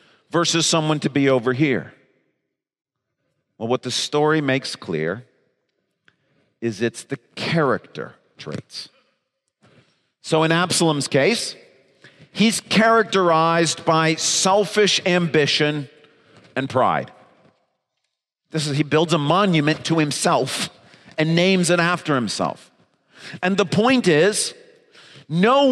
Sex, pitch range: male, 155-205 Hz